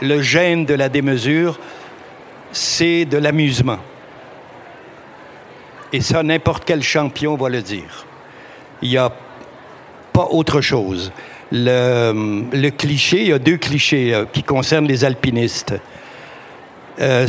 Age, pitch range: 60-79, 125-150 Hz